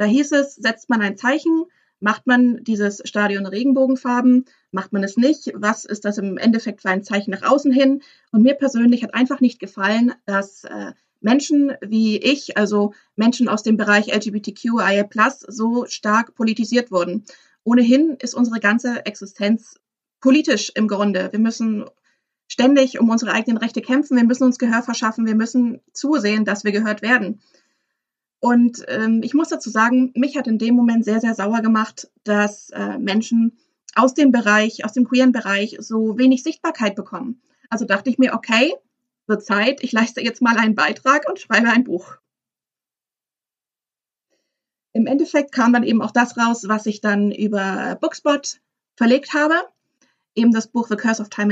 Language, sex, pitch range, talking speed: German, female, 215-260 Hz, 170 wpm